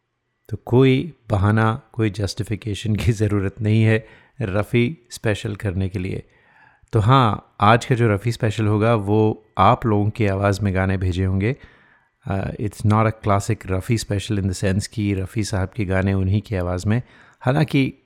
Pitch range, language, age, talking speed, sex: 100-120 Hz, Hindi, 30-49, 165 wpm, male